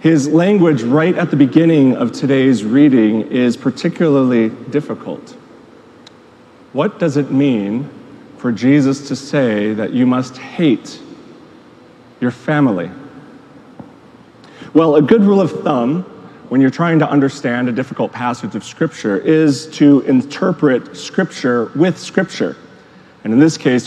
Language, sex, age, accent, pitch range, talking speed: English, male, 40-59, American, 125-160 Hz, 130 wpm